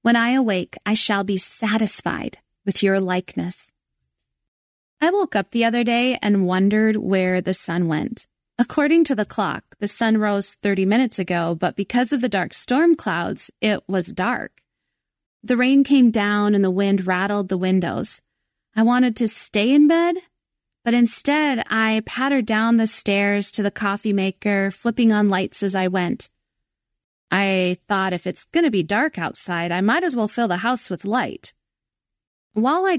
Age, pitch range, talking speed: 30-49, 185-235 Hz, 175 wpm